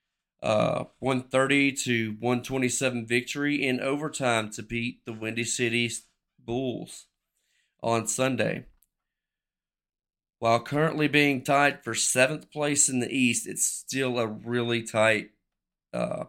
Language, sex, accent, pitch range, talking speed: English, male, American, 115-130 Hz, 115 wpm